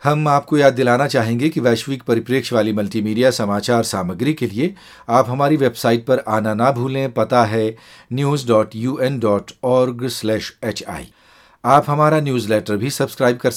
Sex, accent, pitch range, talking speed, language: male, native, 110-140 Hz, 135 wpm, Hindi